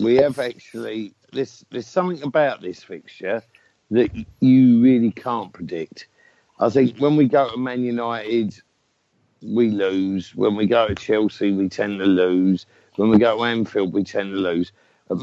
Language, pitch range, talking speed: English, 110-150 Hz, 170 wpm